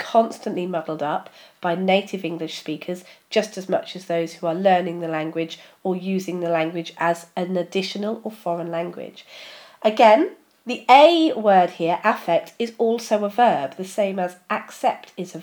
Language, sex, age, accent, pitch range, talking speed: English, female, 40-59, British, 180-245 Hz, 165 wpm